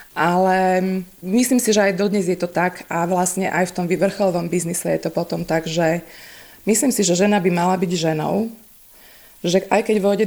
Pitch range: 175-215 Hz